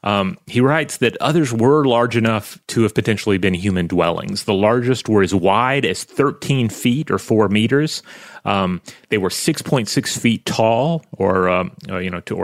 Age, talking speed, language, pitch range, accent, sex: 30-49, 180 wpm, English, 95-125 Hz, American, male